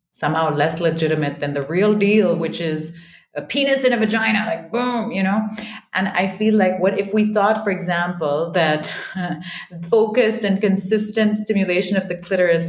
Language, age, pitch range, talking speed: English, 30-49, 165-215 Hz, 175 wpm